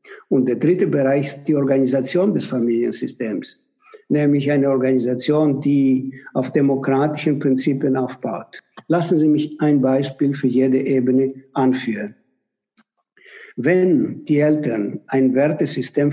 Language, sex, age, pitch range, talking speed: German, male, 60-79, 130-155 Hz, 115 wpm